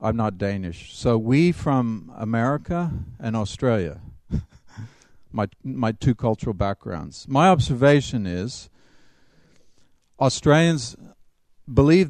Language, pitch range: Danish, 110-140 Hz